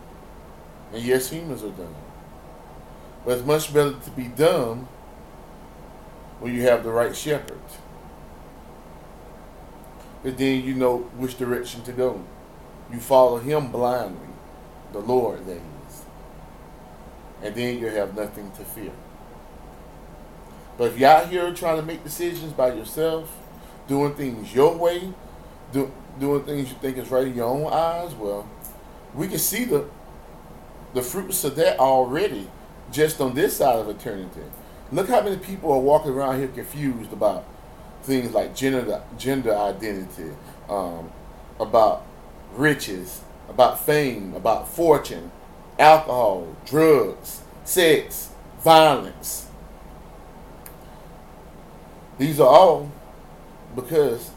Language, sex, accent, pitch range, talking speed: English, male, American, 105-150 Hz, 125 wpm